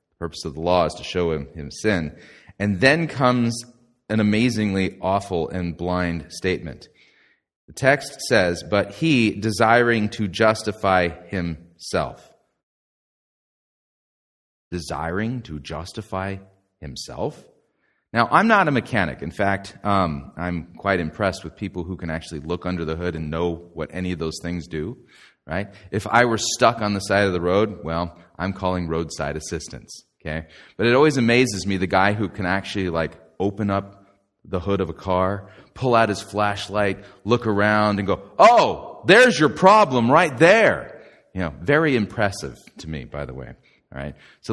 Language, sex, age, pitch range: English, male, 30-49, 85-110 Hz